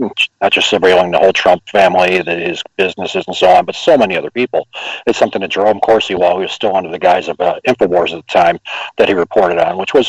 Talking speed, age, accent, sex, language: 250 wpm, 40-59, American, male, English